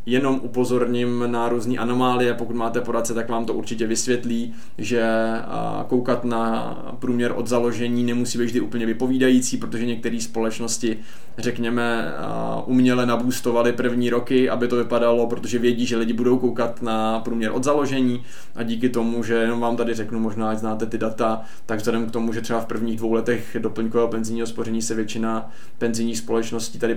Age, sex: 20-39, male